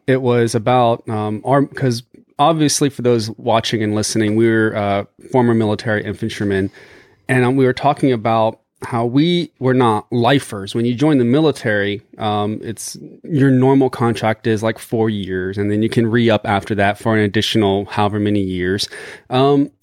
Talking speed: 175 wpm